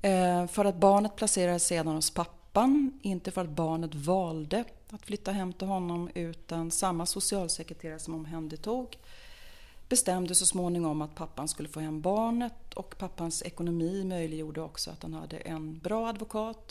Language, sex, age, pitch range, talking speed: Swedish, female, 30-49, 155-180 Hz, 160 wpm